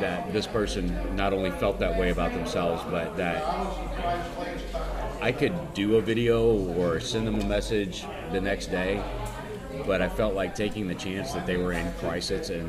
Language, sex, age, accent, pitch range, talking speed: English, male, 30-49, American, 90-105 Hz, 180 wpm